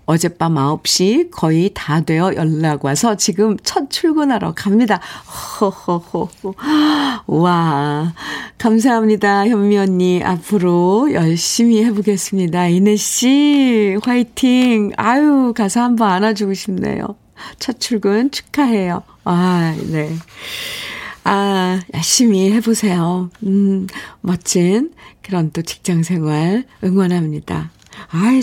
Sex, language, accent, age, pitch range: female, Korean, native, 50-69, 170-225 Hz